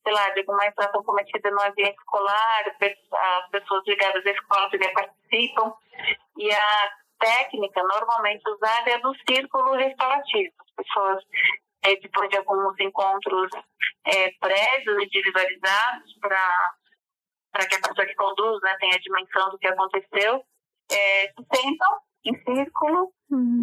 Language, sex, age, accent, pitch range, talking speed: Portuguese, female, 30-49, Brazilian, 200-265 Hz, 135 wpm